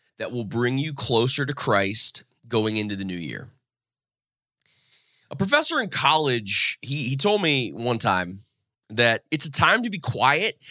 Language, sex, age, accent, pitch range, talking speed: English, male, 20-39, American, 115-145 Hz, 160 wpm